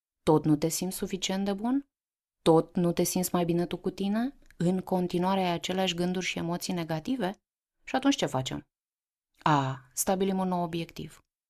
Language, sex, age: Romanian, female, 20-39